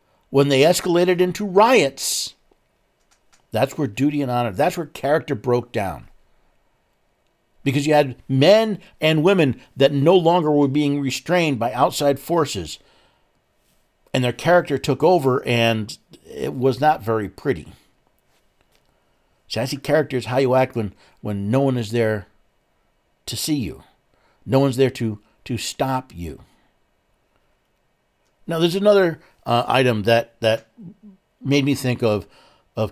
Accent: American